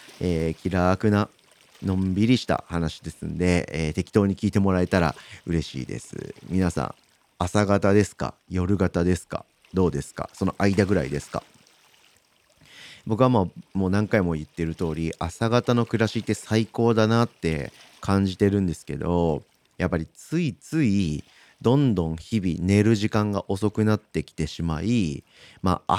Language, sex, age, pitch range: Japanese, male, 40-59, 85-115 Hz